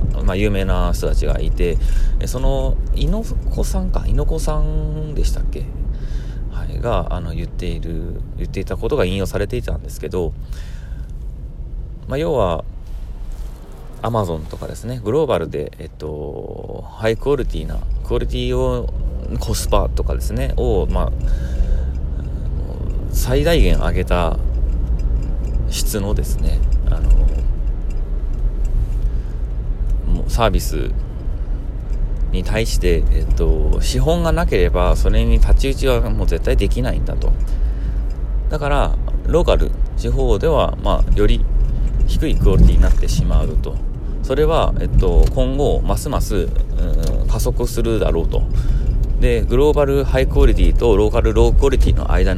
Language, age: Japanese, 30-49